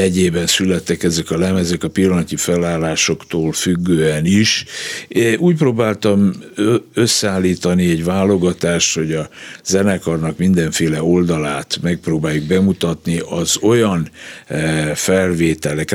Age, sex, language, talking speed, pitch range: 60-79, male, Hungarian, 100 wpm, 80-95 Hz